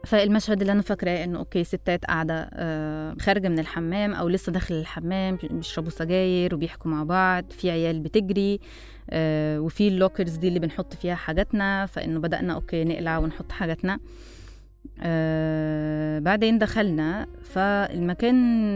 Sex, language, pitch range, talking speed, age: female, Arabic, 165-205 Hz, 135 wpm, 20-39